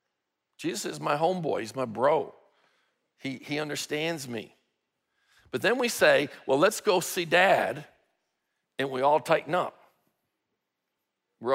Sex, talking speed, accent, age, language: male, 135 wpm, American, 50-69, English